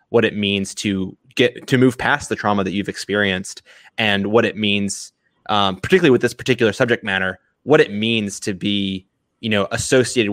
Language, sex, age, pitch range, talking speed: English, male, 20-39, 100-115 Hz, 185 wpm